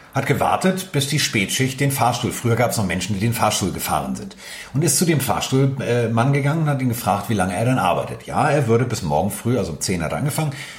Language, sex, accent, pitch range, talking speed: German, male, German, 110-145 Hz, 255 wpm